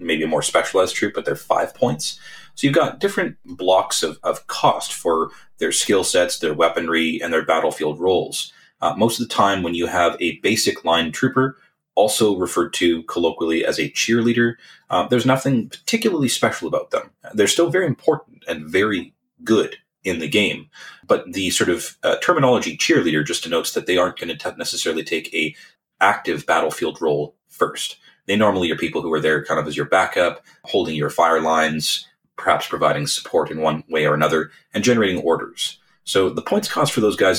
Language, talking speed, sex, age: English, 190 wpm, male, 30-49